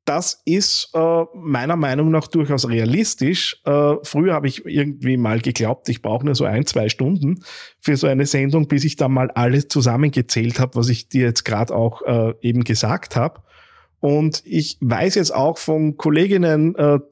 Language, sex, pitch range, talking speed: German, male, 120-150 Hz, 180 wpm